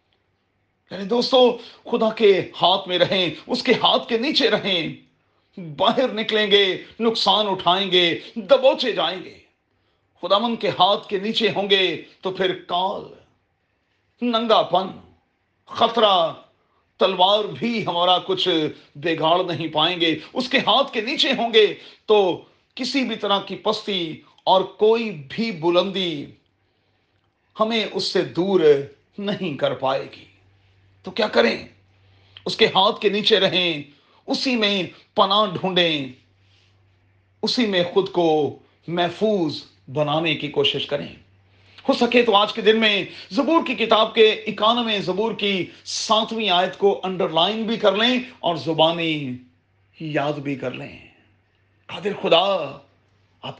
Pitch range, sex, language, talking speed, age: 145-215 Hz, male, Urdu, 120 wpm, 40-59